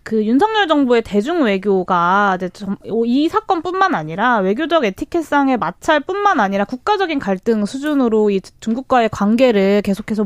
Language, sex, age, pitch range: Korean, female, 20-39, 210-310 Hz